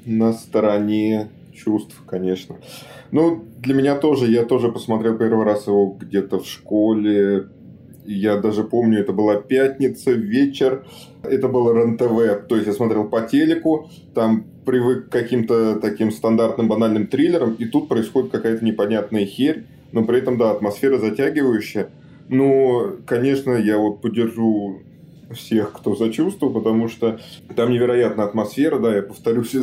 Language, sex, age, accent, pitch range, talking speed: Russian, male, 20-39, native, 105-130 Hz, 140 wpm